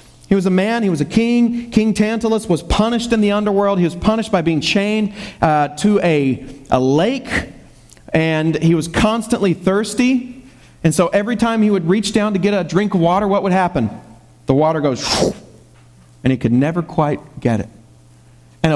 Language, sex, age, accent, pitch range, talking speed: English, male, 40-59, American, 130-190 Hz, 190 wpm